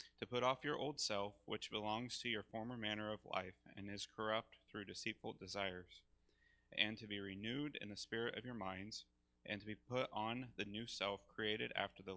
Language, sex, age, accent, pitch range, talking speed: English, male, 30-49, American, 100-115 Hz, 200 wpm